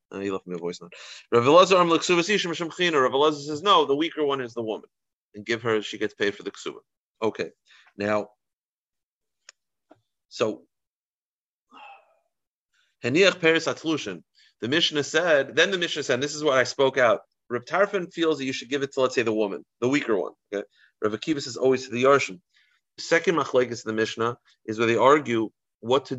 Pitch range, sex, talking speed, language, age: 110-155 Hz, male, 175 wpm, English, 30-49